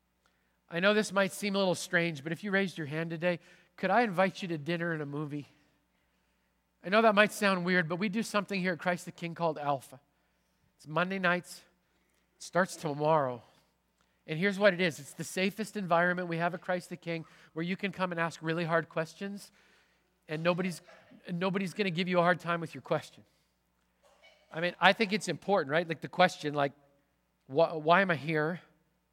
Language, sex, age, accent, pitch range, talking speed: English, male, 40-59, American, 150-190 Hz, 200 wpm